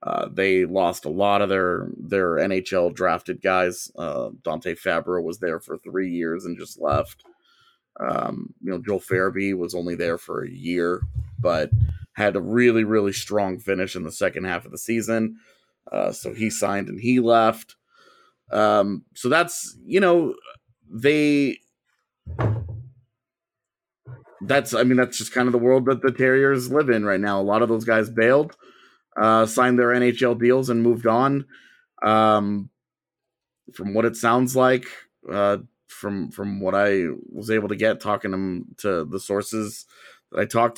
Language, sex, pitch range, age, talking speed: English, male, 100-125 Hz, 30-49, 165 wpm